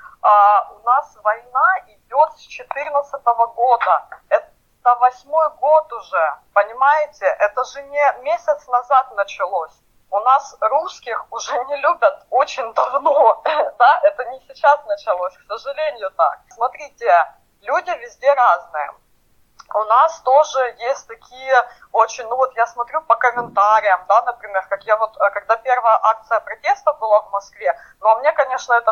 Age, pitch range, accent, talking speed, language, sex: 20-39, 210-280 Hz, native, 145 wpm, Russian, female